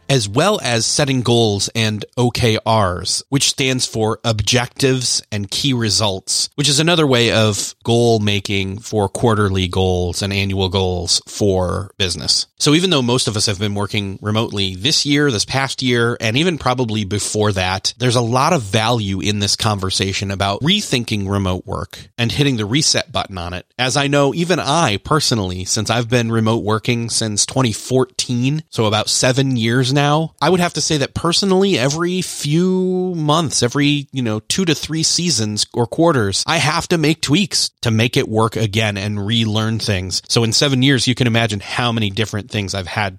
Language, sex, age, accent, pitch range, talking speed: English, male, 30-49, American, 105-140 Hz, 180 wpm